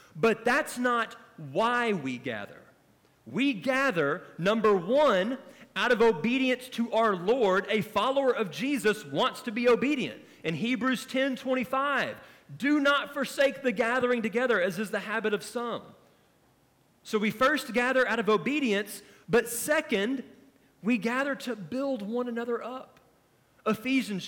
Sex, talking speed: male, 140 wpm